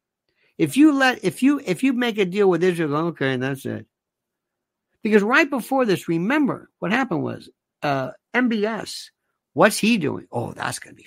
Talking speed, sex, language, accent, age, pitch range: 185 wpm, male, English, American, 60-79, 150-245 Hz